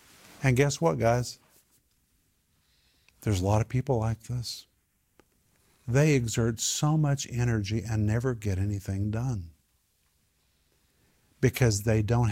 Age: 50-69